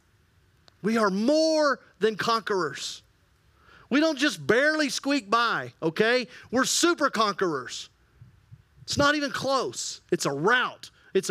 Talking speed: 120 wpm